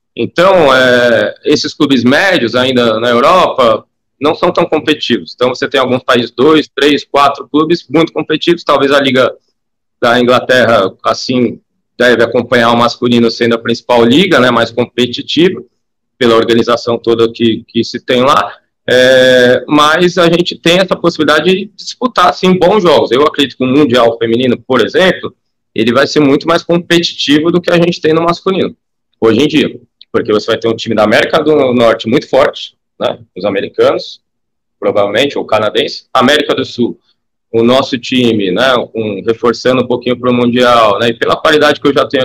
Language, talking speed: Portuguese, 170 wpm